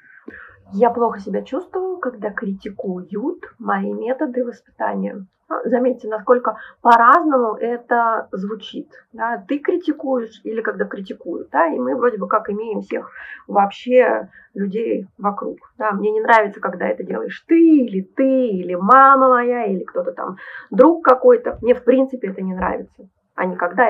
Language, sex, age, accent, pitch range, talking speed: Russian, female, 20-39, native, 205-255 Hz, 145 wpm